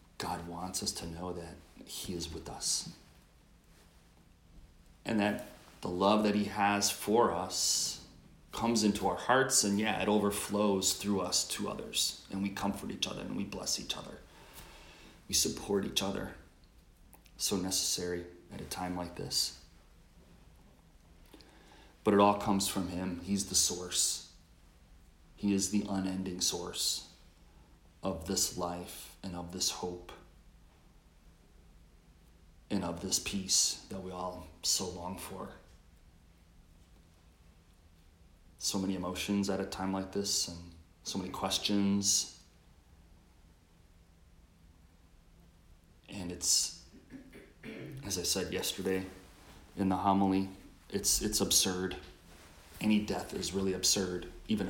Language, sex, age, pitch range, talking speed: English, male, 30-49, 85-95 Hz, 125 wpm